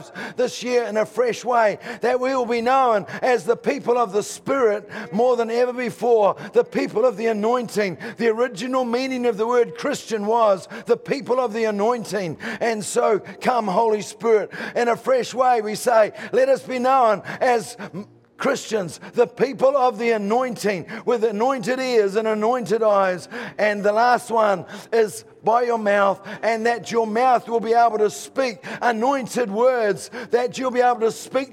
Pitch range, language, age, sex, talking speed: 210-245 Hz, English, 50-69, male, 175 wpm